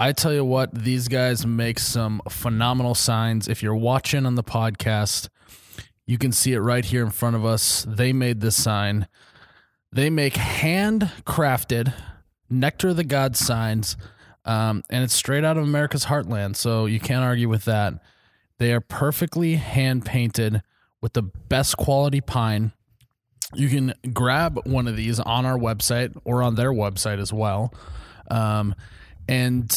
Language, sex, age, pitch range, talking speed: English, male, 20-39, 110-130 Hz, 160 wpm